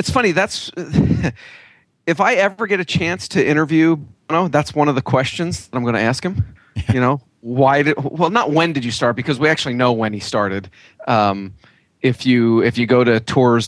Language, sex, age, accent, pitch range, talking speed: English, male, 30-49, American, 110-150 Hz, 210 wpm